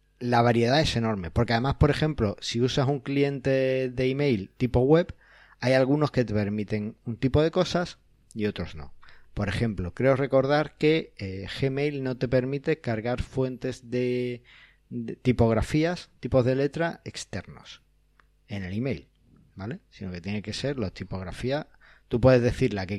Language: Spanish